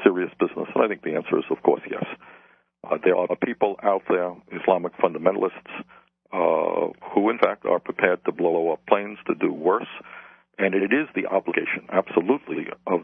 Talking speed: 180 wpm